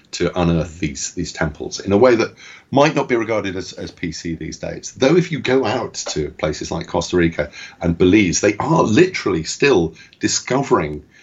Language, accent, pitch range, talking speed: English, British, 75-100 Hz, 185 wpm